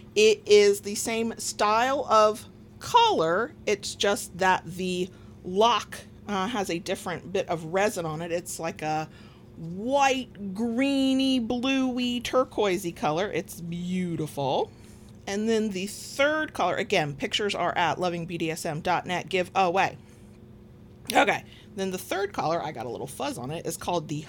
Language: English